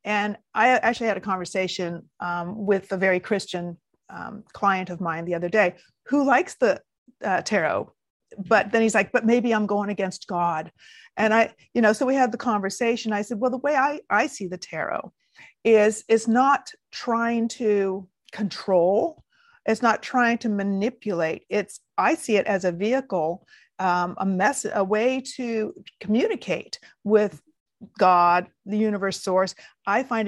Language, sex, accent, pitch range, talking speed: English, female, American, 190-235 Hz, 165 wpm